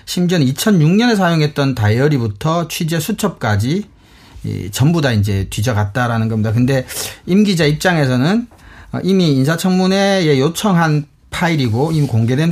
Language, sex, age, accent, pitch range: Korean, male, 40-59, native, 115-170 Hz